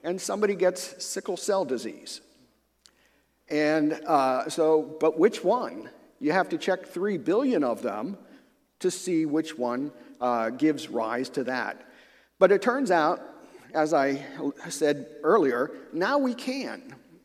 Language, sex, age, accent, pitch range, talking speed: English, male, 50-69, American, 145-215 Hz, 140 wpm